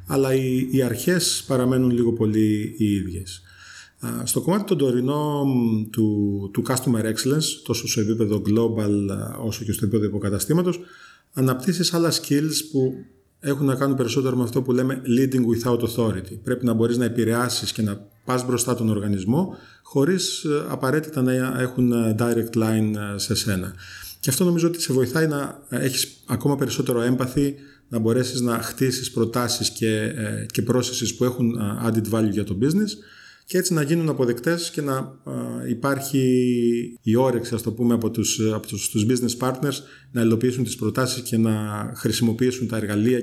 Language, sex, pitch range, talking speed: Greek, male, 110-135 Hz, 160 wpm